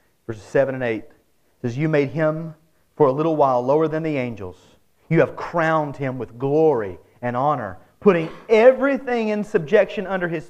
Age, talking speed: 40-59, 170 wpm